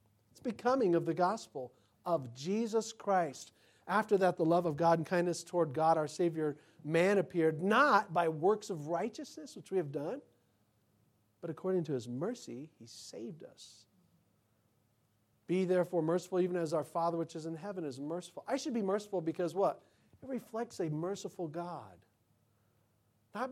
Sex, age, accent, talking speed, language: male, 50-69, American, 165 wpm, English